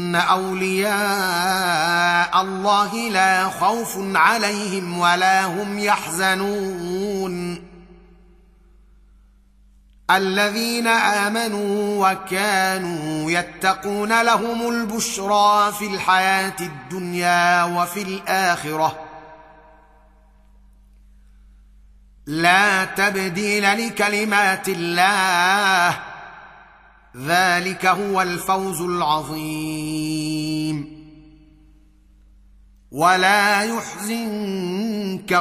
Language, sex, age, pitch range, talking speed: Arabic, male, 30-49, 155-195 Hz, 50 wpm